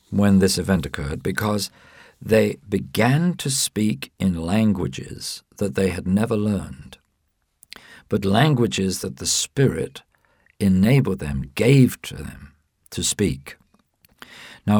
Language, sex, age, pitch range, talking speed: English, male, 50-69, 85-130 Hz, 120 wpm